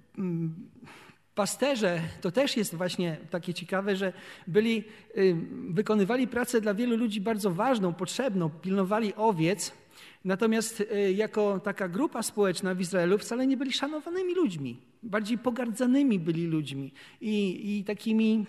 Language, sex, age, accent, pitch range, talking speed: Polish, male, 40-59, native, 180-220 Hz, 125 wpm